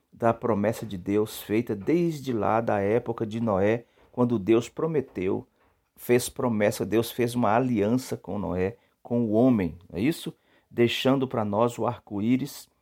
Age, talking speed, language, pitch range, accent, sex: 50-69, 150 wpm, Portuguese, 105-135 Hz, Brazilian, male